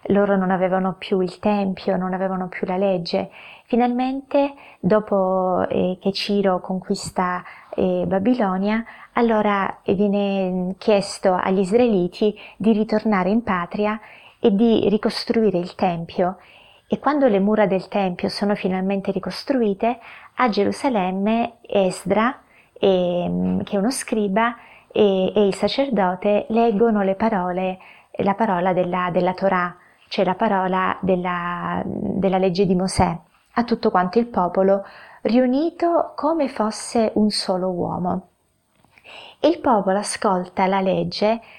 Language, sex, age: Italian, female, 20-39